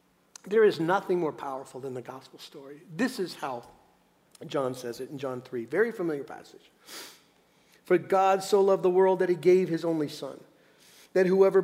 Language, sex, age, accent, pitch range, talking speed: English, male, 50-69, American, 160-195 Hz, 180 wpm